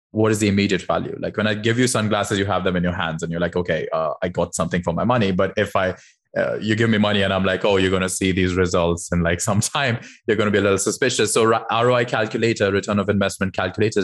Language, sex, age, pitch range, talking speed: English, male, 20-39, 95-120 Hz, 275 wpm